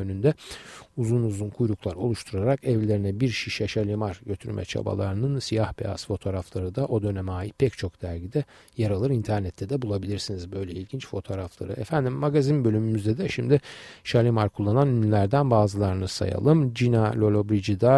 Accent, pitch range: native, 100-130 Hz